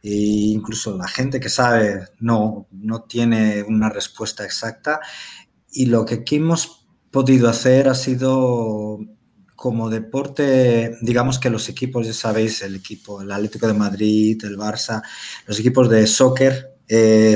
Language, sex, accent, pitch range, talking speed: Spanish, male, Spanish, 110-130 Hz, 145 wpm